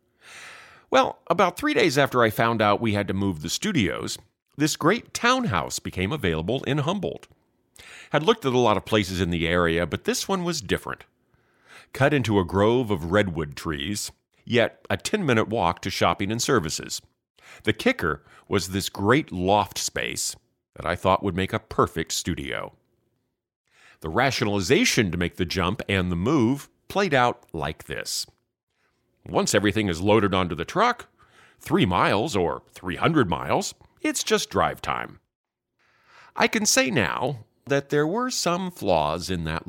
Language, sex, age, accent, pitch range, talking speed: English, male, 40-59, American, 90-120 Hz, 160 wpm